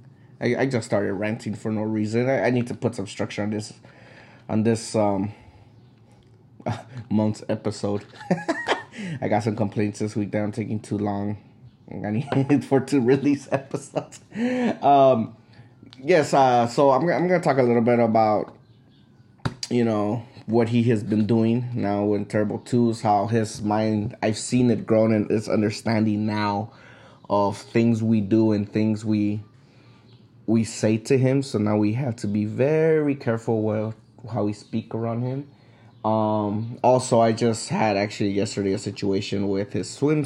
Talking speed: 160 wpm